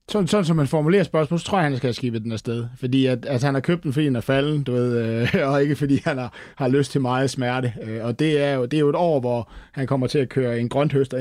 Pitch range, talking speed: 120-140 Hz, 310 wpm